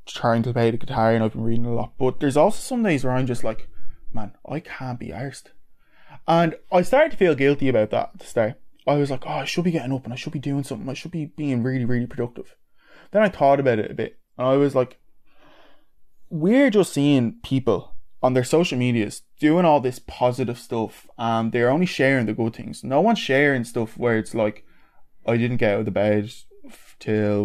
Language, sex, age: English, male, 20-39